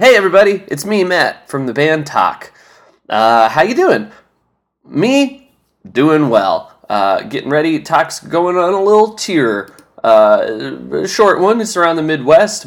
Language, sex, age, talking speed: English, male, 20-39, 150 wpm